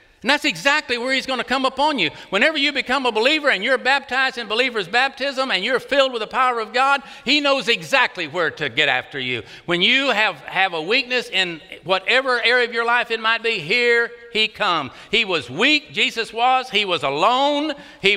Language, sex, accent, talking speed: English, male, American, 210 wpm